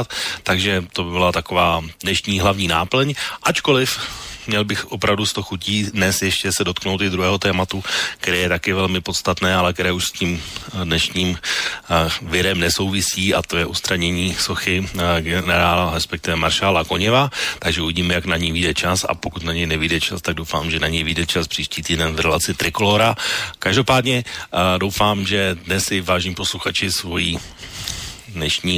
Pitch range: 85-100 Hz